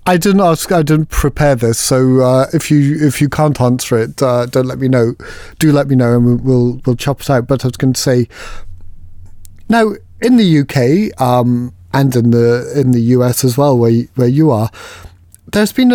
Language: English